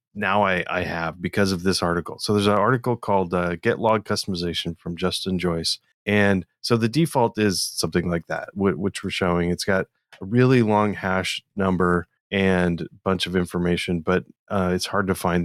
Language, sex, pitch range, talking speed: English, male, 90-110 Hz, 195 wpm